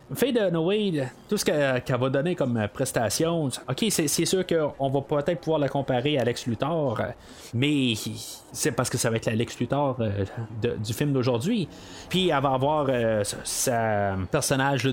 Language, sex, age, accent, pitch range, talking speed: French, male, 30-49, Canadian, 120-155 Hz, 180 wpm